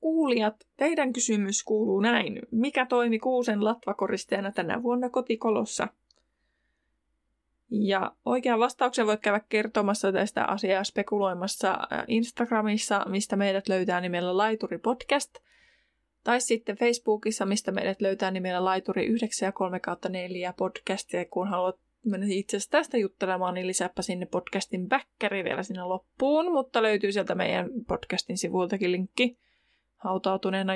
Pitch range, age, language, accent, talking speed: 195-245 Hz, 20-39, Finnish, native, 125 wpm